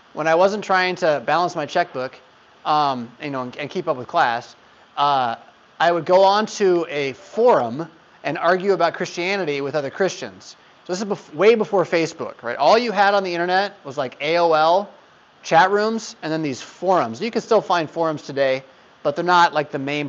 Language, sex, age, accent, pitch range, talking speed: English, male, 30-49, American, 145-195 Hz, 200 wpm